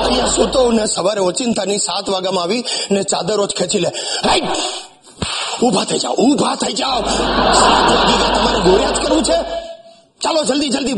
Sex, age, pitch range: male, 40-59, 190-275 Hz